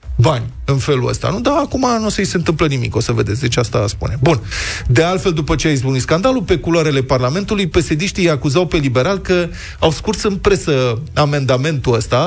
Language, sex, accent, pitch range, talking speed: Romanian, male, native, 125-170 Hz, 215 wpm